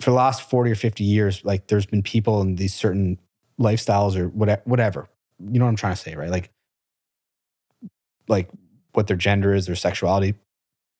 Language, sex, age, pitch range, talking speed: English, male, 30-49, 100-120 Hz, 185 wpm